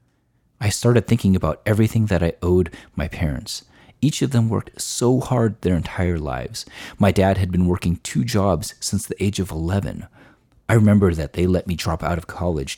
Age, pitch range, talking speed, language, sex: 40-59, 85-110 Hz, 195 wpm, English, male